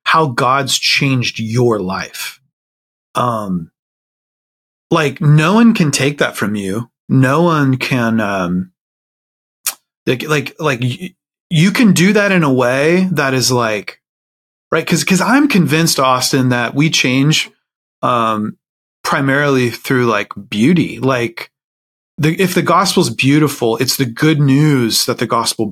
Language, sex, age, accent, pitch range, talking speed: English, male, 30-49, American, 110-150 Hz, 140 wpm